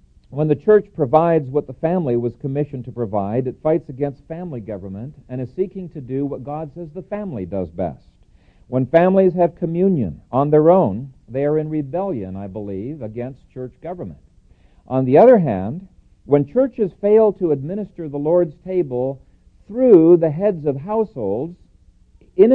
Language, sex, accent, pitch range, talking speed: English, male, American, 120-170 Hz, 165 wpm